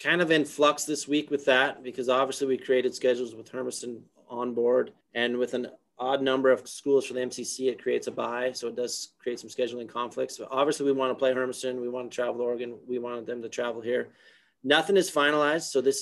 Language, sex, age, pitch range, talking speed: English, male, 30-49, 120-140 Hz, 230 wpm